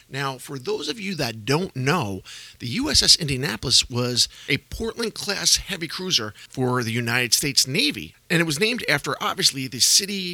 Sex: male